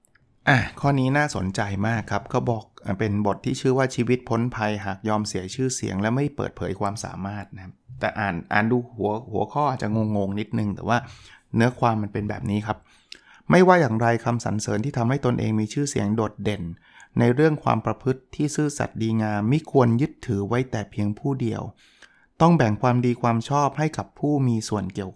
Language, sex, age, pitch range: Thai, male, 20-39, 105-135 Hz